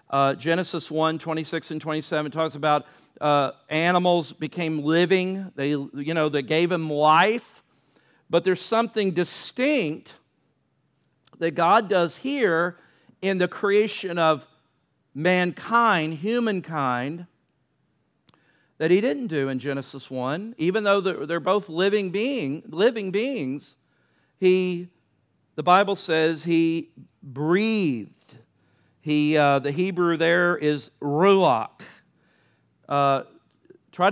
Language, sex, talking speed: English, male, 110 wpm